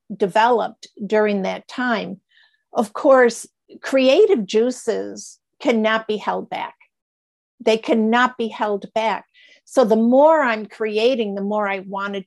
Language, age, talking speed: English, 50-69, 125 wpm